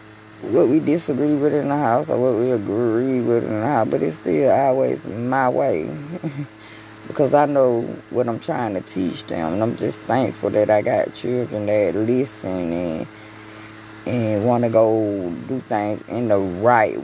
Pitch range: 105-120 Hz